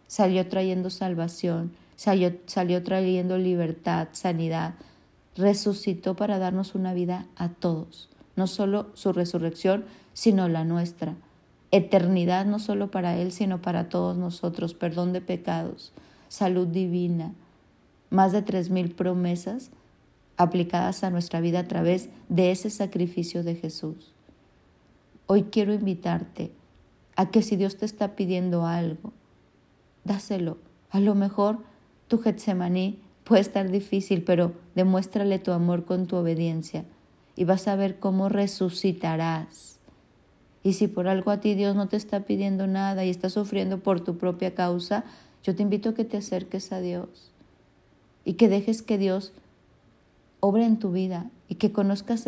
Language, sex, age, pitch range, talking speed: Spanish, female, 40-59, 180-200 Hz, 140 wpm